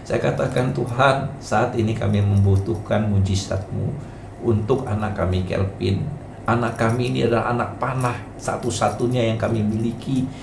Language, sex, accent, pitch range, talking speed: Indonesian, male, native, 110-130 Hz, 125 wpm